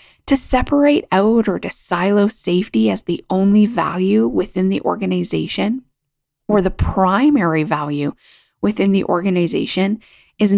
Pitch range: 160-220 Hz